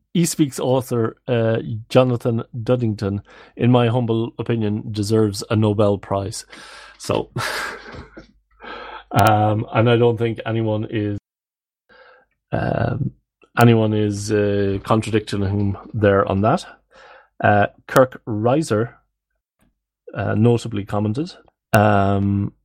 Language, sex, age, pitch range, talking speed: English, male, 30-49, 100-120 Hz, 100 wpm